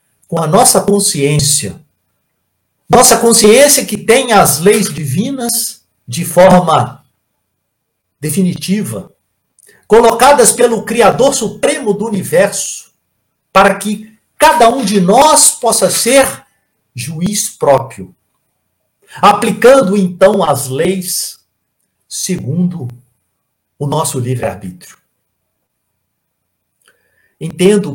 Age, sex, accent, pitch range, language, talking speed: 60-79, male, Brazilian, 130-200 Hz, Portuguese, 85 wpm